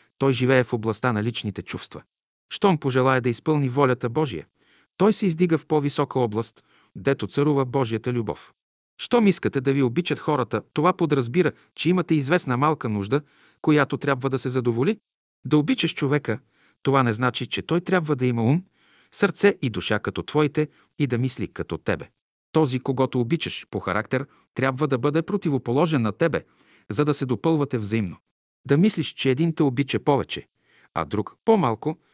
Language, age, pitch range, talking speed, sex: Bulgarian, 50-69, 115-155 Hz, 170 wpm, male